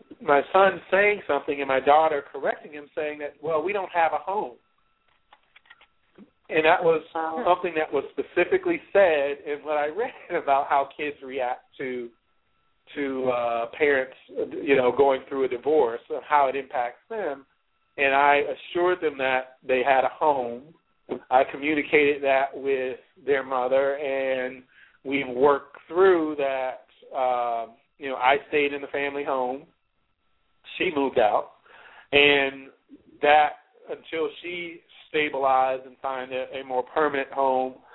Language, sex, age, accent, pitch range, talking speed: English, male, 40-59, American, 130-180 Hz, 145 wpm